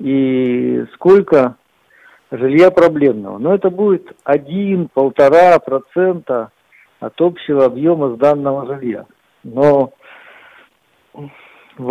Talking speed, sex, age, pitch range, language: 80 wpm, male, 50-69, 130-185 Hz, Russian